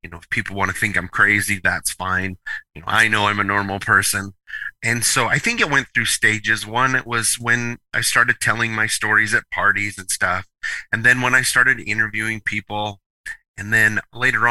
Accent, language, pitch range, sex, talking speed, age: American, English, 95-115 Hz, male, 205 wpm, 30-49